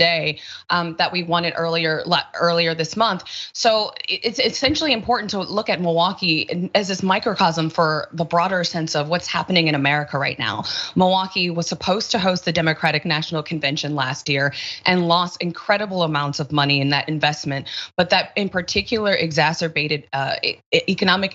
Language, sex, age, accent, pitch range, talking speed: English, female, 20-39, American, 160-200 Hz, 165 wpm